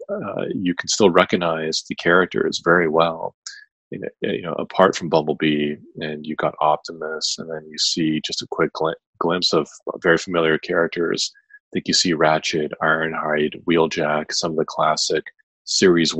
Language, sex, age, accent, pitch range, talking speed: English, male, 30-49, American, 80-100 Hz, 160 wpm